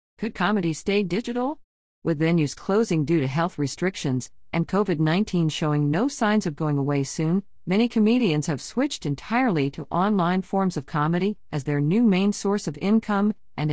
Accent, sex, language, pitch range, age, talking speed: American, female, English, 140-195 Hz, 50-69, 165 wpm